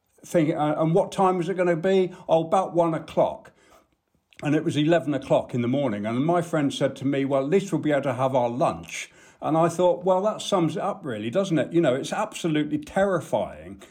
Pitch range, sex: 135-175 Hz, male